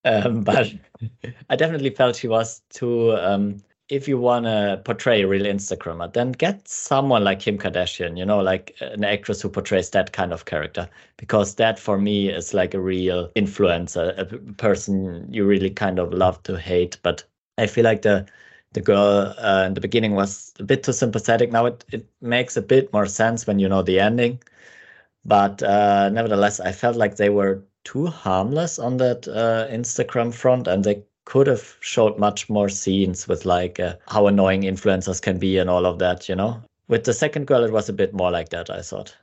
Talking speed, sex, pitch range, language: 200 wpm, male, 95-115 Hz, English